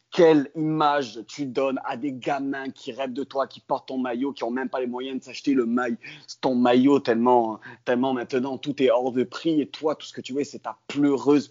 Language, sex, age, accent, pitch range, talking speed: French, male, 30-49, French, 120-140 Hz, 230 wpm